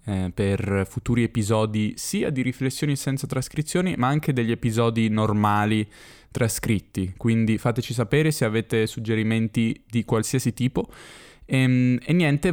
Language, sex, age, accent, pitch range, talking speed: Italian, male, 10-29, native, 115-140 Hz, 125 wpm